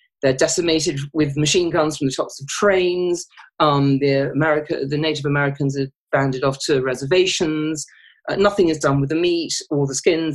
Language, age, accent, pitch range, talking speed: English, 40-59, British, 140-170 Hz, 180 wpm